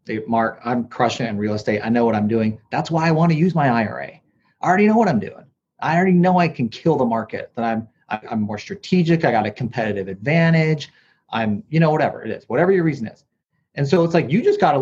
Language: English